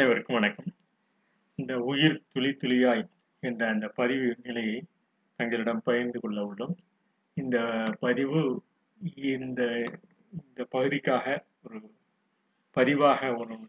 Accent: native